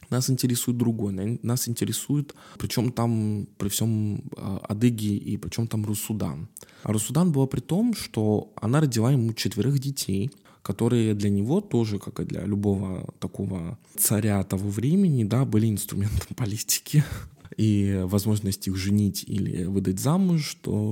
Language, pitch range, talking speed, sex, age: Russian, 100-145 Hz, 145 wpm, male, 20-39